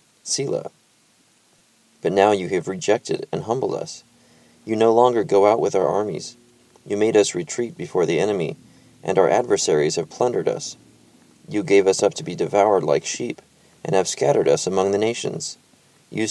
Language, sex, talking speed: English, male, 175 wpm